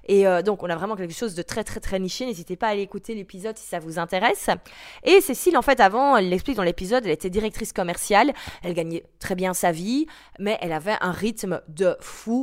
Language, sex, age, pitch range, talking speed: French, female, 20-39, 180-240 Hz, 235 wpm